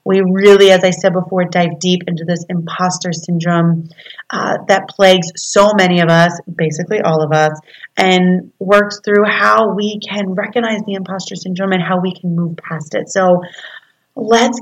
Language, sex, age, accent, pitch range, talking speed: English, female, 30-49, American, 185-230 Hz, 170 wpm